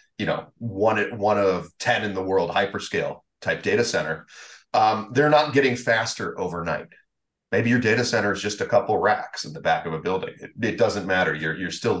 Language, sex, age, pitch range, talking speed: English, male, 30-49, 90-120 Hz, 210 wpm